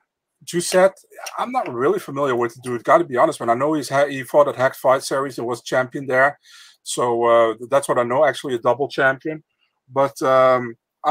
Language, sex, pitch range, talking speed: English, male, 115-145 Hz, 215 wpm